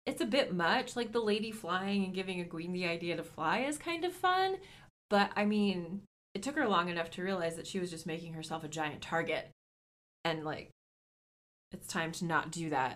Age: 20-39